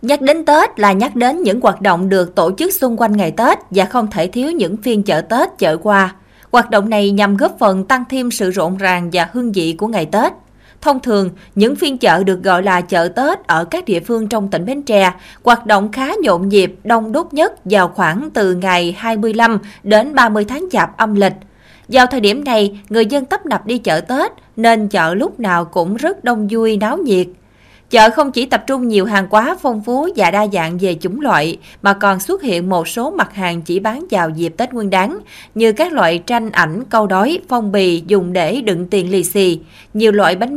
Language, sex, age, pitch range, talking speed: Vietnamese, female, 20-39, 190-250 Hz, 220 wpm